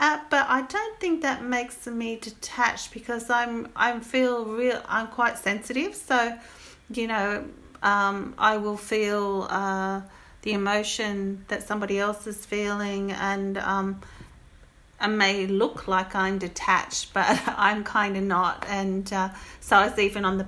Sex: female